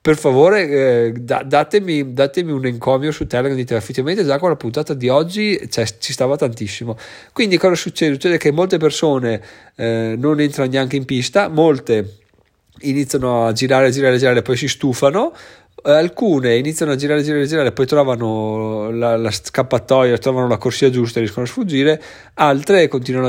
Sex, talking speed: male, 170 wpm